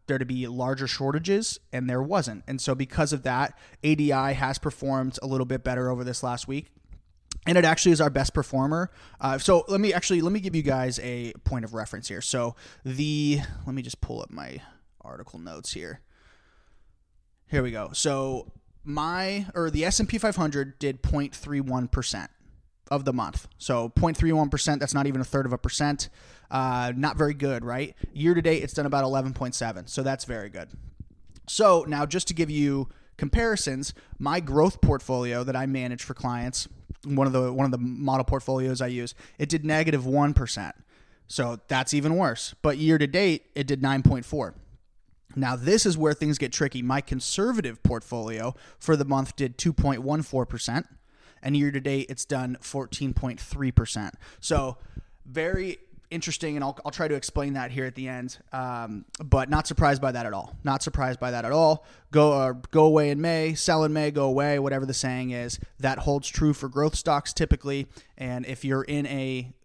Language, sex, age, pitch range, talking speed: English, male, 20-39, 125-150 Hz, 180 wpm